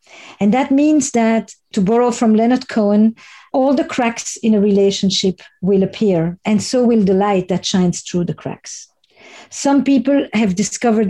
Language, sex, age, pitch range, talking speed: English, female, 50-69, 210-265 Hz, 170 wpm